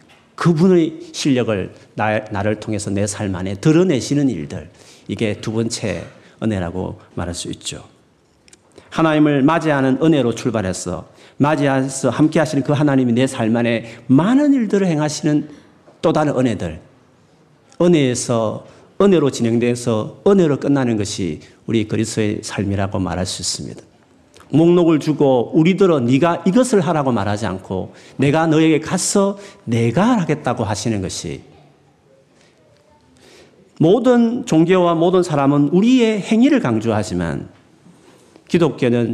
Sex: male